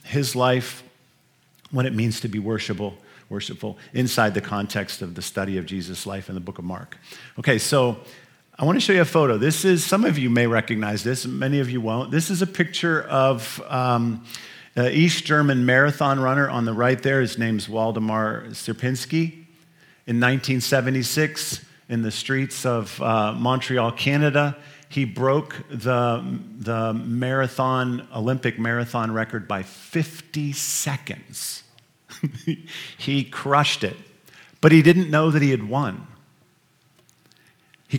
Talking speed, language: 150 wpm, English